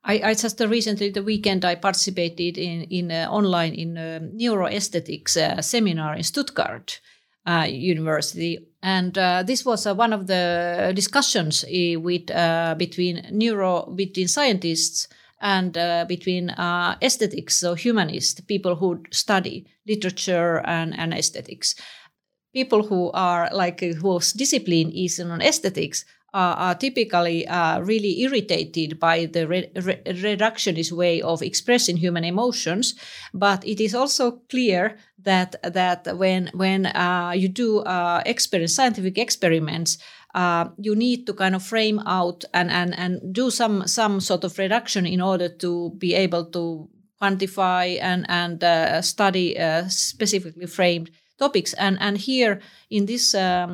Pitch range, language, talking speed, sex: 175-210 Hz, English, 140 wpm, female